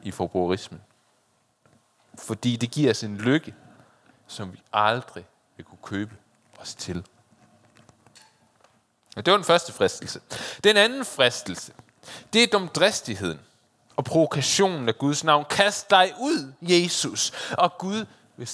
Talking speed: 130 wpm